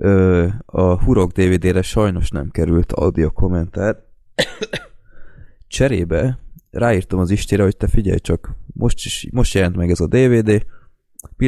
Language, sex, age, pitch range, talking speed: Hungarian, male, 20-39, 85-100 Hz, 130 wpm